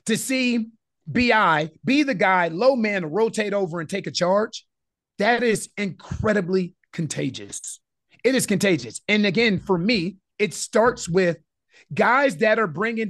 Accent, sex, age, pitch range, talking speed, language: American, male, 30-49, 180-230 Hz, 145 wpm, English